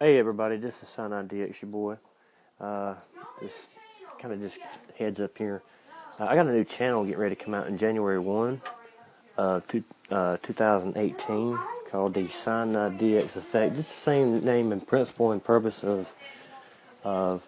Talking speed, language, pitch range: 170 wpm, English, 100-125 Hz